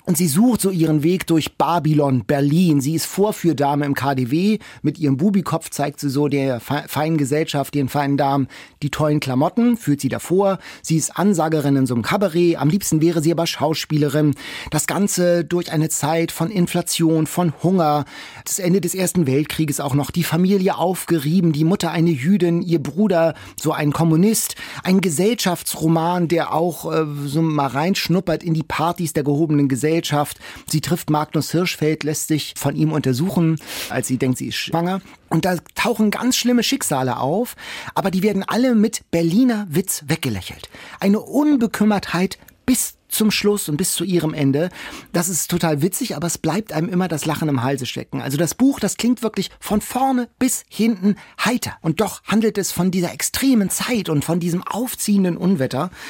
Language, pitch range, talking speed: German, 150-190 Hz, 175 wpm